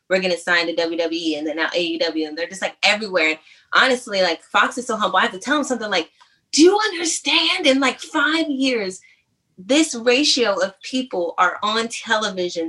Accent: American